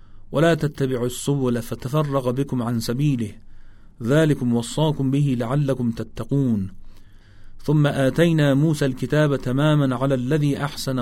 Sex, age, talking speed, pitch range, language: male, 40-59, 110 wpm, 115-145 Hz, Persian